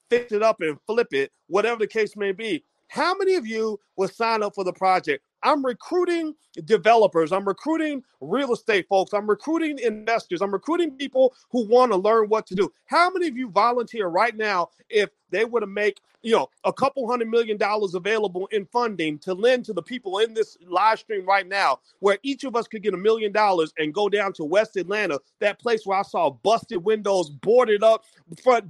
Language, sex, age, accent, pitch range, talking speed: English, male, 40-59, American, 195-250 Hz, 210 wpm